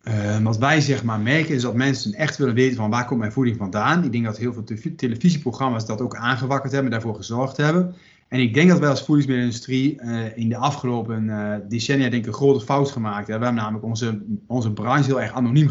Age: 30-49